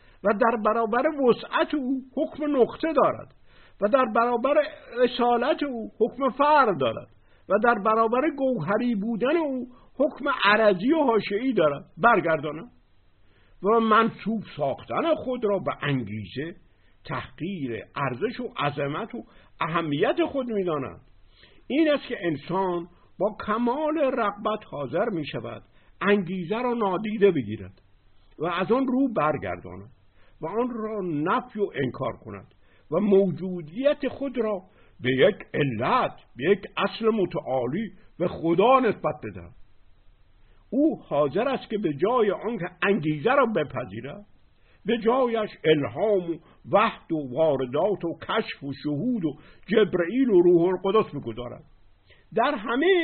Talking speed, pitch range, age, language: 125 wpm, 150-240 Hz, 50-69, Persian